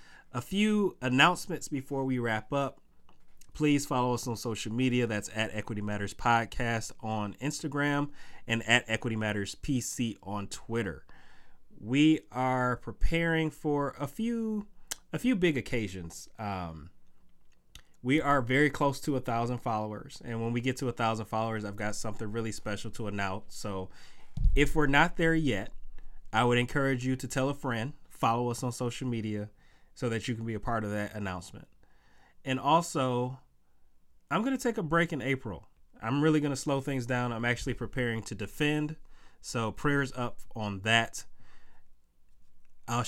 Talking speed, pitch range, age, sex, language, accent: 160 wpm, 105-135 Hz, 30-49, male, English, American